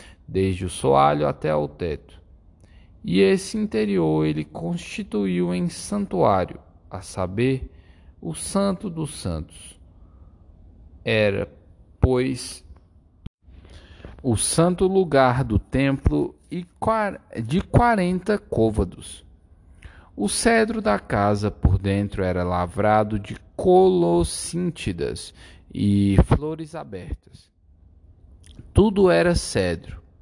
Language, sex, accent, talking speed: Portuguese, male, Brazilian, 90 wpm